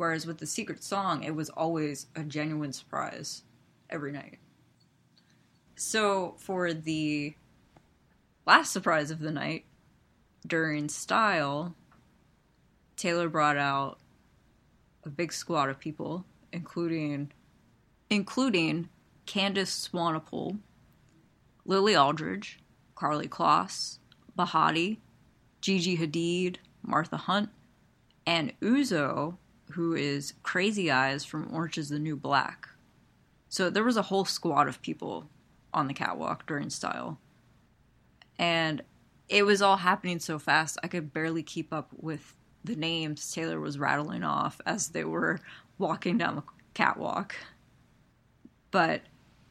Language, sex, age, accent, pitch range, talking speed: English, female, 20-39, American, 150-180 Hz, 115 wpm